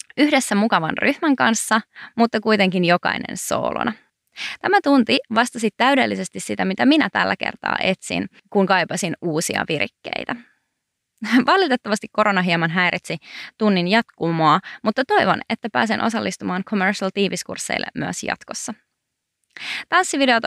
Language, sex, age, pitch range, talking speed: Finnish, female, 20-39, 165-230 Hz, 110 wpm